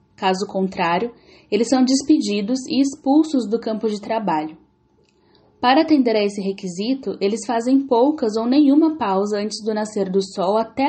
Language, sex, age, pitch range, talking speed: Portuguese, female, 10-29, 200-245 Hz, 155 wpm